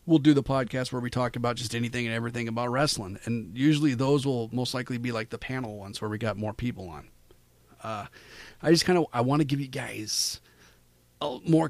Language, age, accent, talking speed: English, 40-59, American, 220 wpm